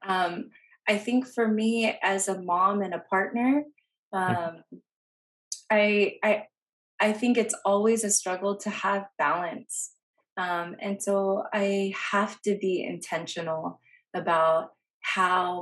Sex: female